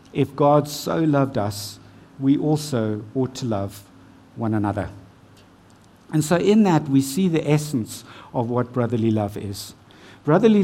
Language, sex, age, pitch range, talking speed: English, male, 60-79, 110-155 Hz, 145 wpm